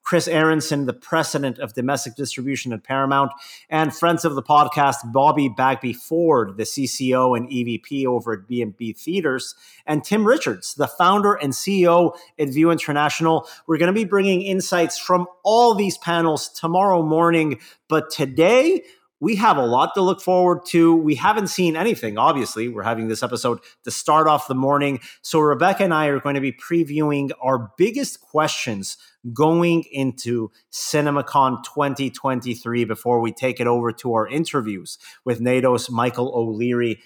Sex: male